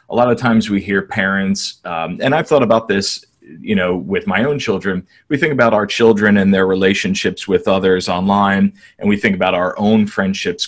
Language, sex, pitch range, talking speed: English, male, 95-120 Hz, 210 wpm